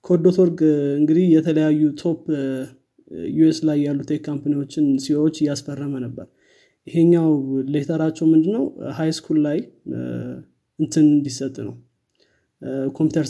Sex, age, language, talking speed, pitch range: male, 20-39, Amharic, 95 wpm, 140-165 Hz